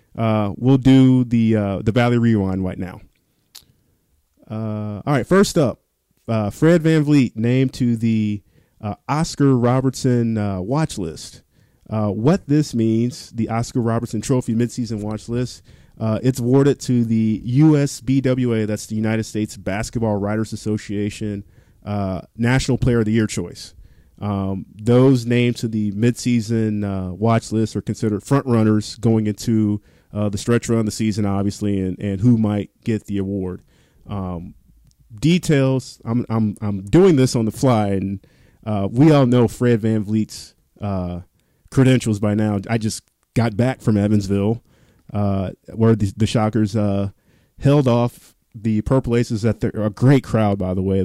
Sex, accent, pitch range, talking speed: male, American, 105-125 Hz, 160 wpm